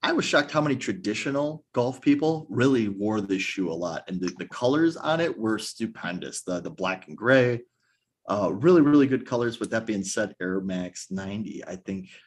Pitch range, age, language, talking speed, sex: 100-130 Hz, 30-49, English, 200 wpm, male